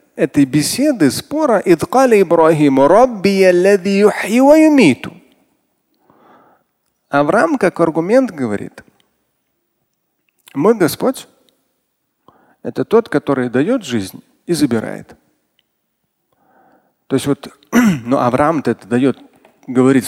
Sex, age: male, 40-59